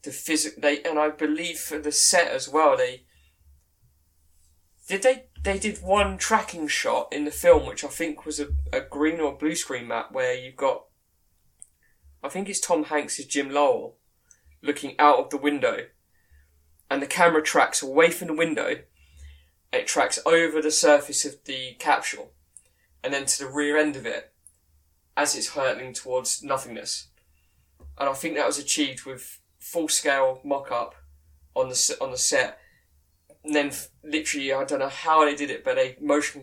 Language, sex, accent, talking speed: English, male, British, 175 wpm